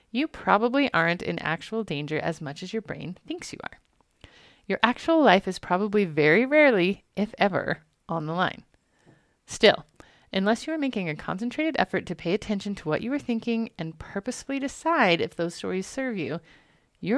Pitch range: 170-240 Hz